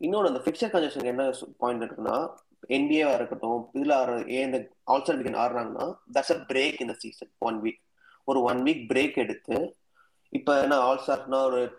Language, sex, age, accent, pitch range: Tamil, male, 20-39, native, 125-155 Hz